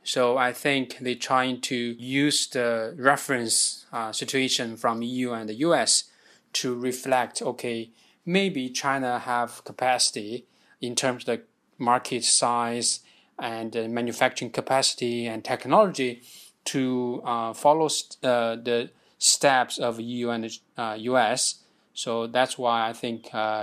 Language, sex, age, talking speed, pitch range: English, male, 20-39, 130 wpm, 115-130 Hz